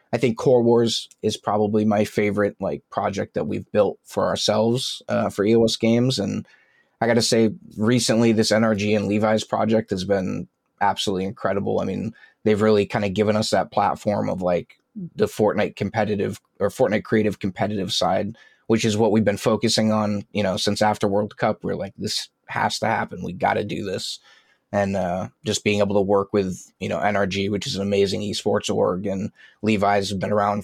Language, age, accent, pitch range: English, 20-39, American, 105-115 Hz